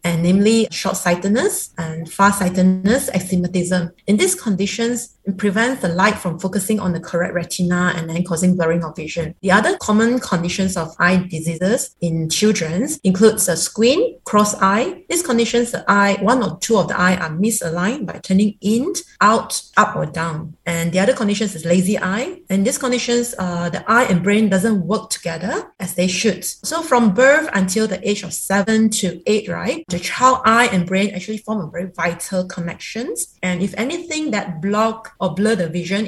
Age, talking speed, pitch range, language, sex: 30-49, 185 wpm, 180-220 Hz, English, female